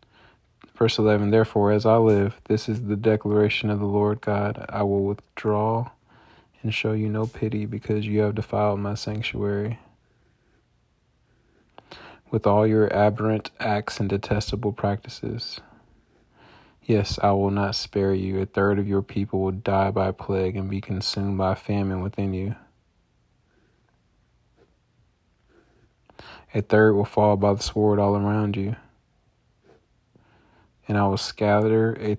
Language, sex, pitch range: English, male, 100-110 Hz